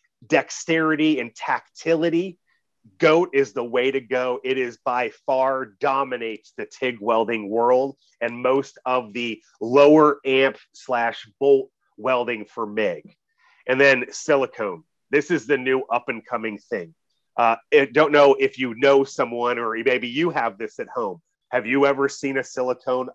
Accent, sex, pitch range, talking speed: American, male, 120-155 Hz, 160 wpm